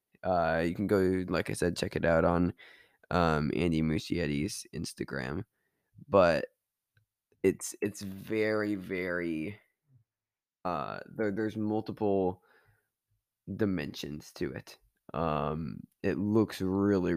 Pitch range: 85-105 Hz